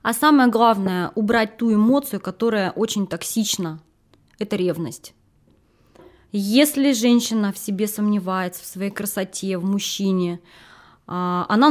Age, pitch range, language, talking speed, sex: 20-39, 190-230 Hz, Russian, 115 wpm, female